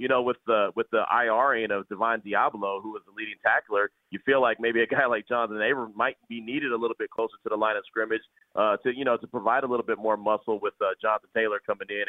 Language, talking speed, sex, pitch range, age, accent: English, 280 wpm, male, 105-145 Hz, 30-49, American